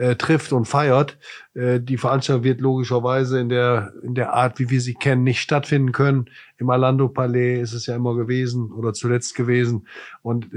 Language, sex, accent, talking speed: German, male, German, 175 wpm